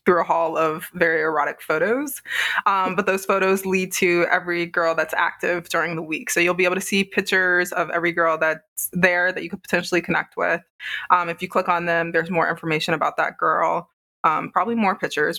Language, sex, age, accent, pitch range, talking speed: English, female, 20-39, American, 165-185 Hz, 210 wpm